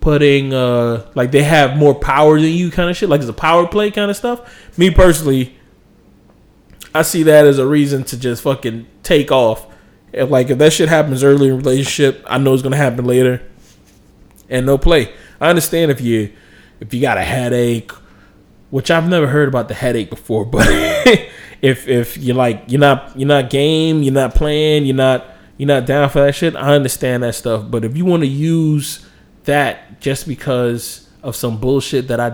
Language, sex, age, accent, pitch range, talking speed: English, male, 20-39, American, 120-150 Hz, 200 wpm